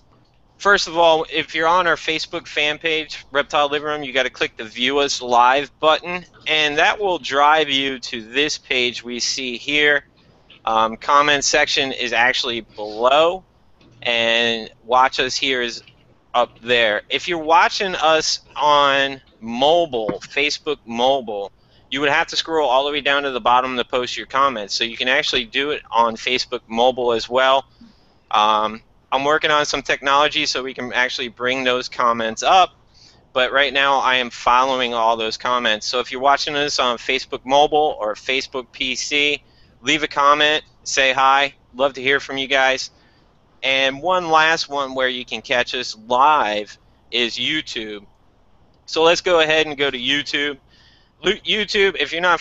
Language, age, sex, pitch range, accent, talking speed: English, 30-49, male, 125-150 Hz, American, 170 wpm